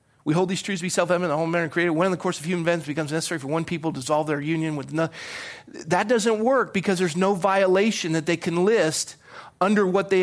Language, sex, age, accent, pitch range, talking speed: English, male, 40-59, American, 150-195 Hz, 250 wpm